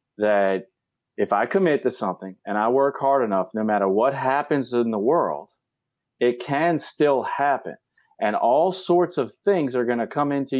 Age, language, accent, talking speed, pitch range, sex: 40-59, English, American, 180 wpm, 95-140 Hz, male